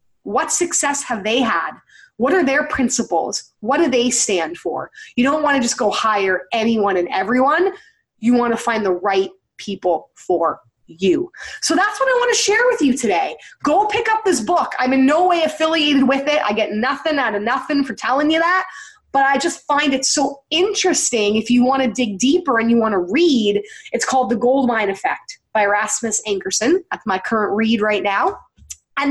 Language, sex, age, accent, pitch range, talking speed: English, female, 20-39, American, 225-320 Hz, 200 wpm